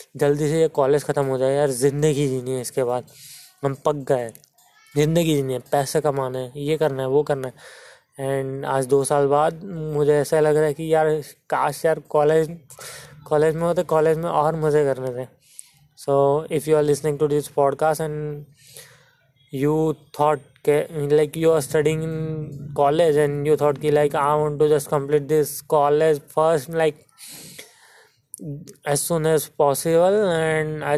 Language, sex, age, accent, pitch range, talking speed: Hindi, male, 20-39, native, 140-155 Hz, 175 wpm